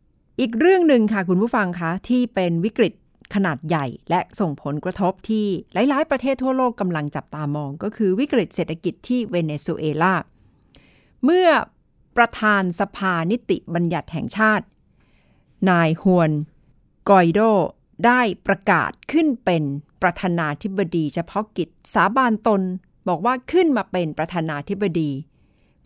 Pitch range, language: 165-220 Hz, Thai